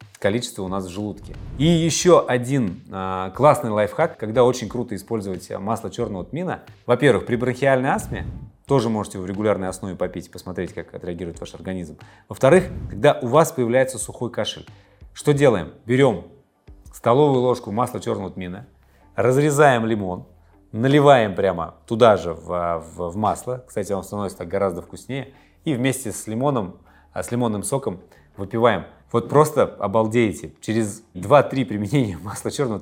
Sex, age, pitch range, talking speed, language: male, 30-49, 95-125 Hz, 145 wpm, English